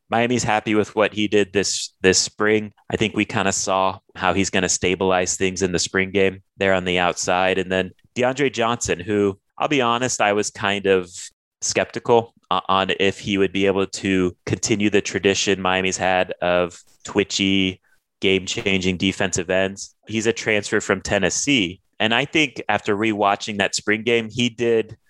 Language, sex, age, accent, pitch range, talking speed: English, male, 30-49, American, 95-110 Hz, 175 wpm